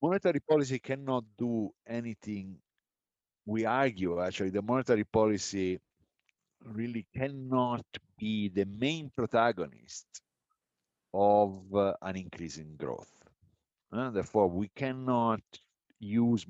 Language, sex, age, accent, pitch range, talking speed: English, male, 50-69, Italian, 95-130 Hz, 100 wpm